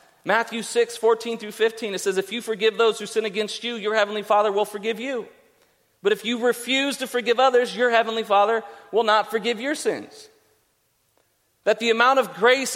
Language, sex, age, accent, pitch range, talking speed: English, male, 40-59, American, 160-230 Hz, 195 wpm